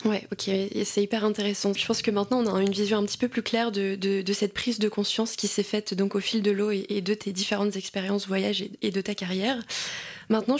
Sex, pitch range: female, 200-230 Hz